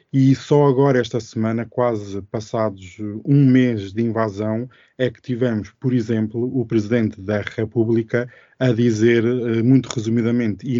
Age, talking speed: 20-39, 140 wpm